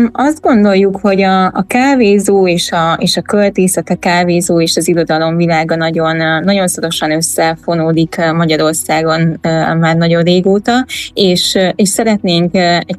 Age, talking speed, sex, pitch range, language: 20-39, 130 wpm, female, 170-195 Hz, Hungarian